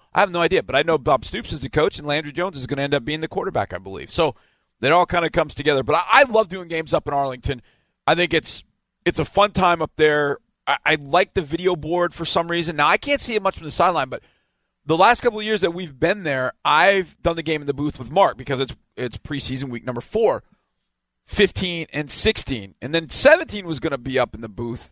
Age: 40-59